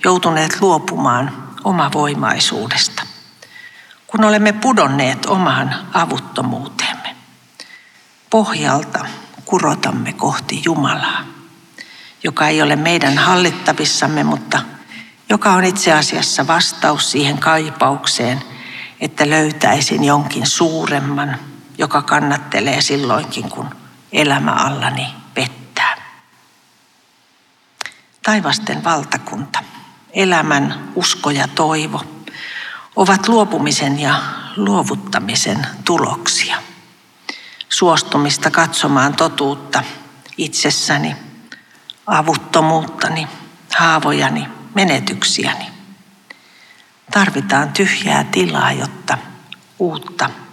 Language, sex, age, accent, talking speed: Finnish, female, 60-79, native, 70 wpm